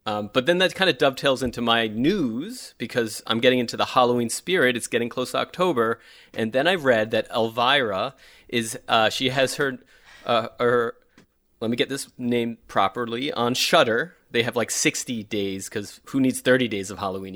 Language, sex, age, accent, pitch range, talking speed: English, male, 30-49, American, 105-125 Hz, 190 wpm